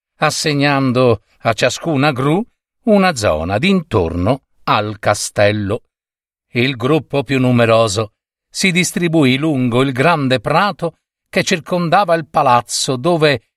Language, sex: Italian, male